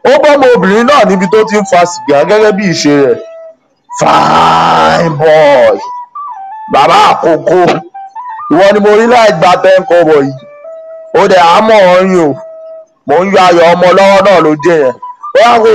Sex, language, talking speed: male, English, 70 wpm